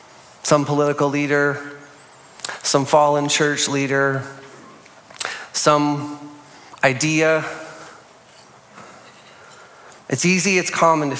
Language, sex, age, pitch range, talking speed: English, male, 30-49, 145-180 Hz, 75 wpm